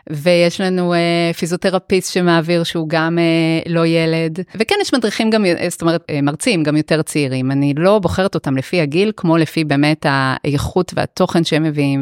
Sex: female